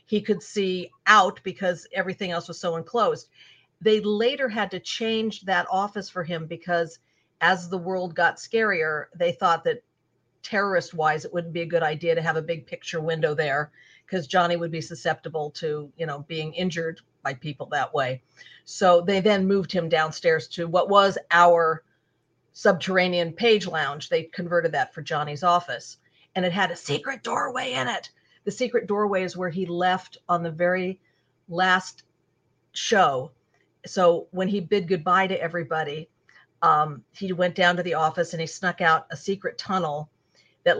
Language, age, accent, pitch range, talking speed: English, 50-69, American, 160-185 Hz, 175 wpm